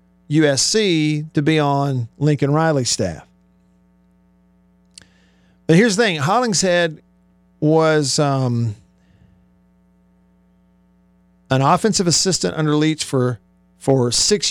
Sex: male